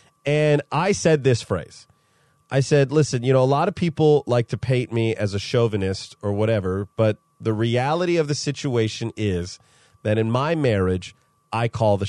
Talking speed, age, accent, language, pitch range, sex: 185 wpm, 30-49, American, English, 115-160 Hz, male